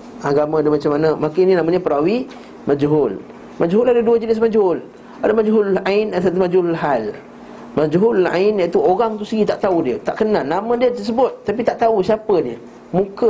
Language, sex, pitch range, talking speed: Malay, male, 150-195 Hz, 175 wpm